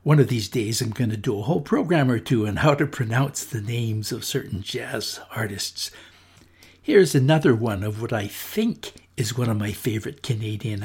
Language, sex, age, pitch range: English, male, 60-79, 110-135 Hz